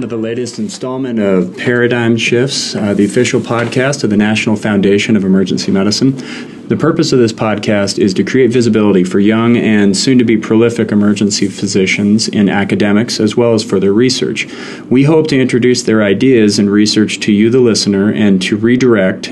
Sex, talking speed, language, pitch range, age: male, 175 wpm, English, 105-120 Hz, 40-59